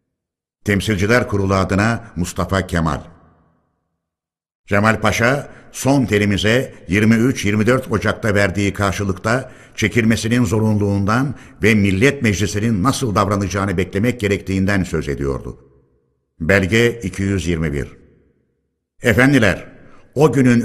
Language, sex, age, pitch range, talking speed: Turkish, male, 60-79, 95-120 Hz, 85 wpm